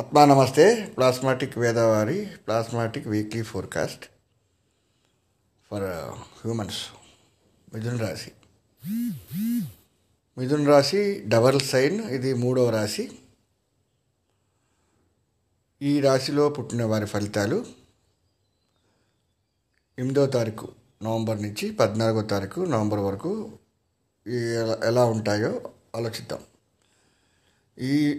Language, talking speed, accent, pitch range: Telugu, 75 wpm, native, 105-130 Hz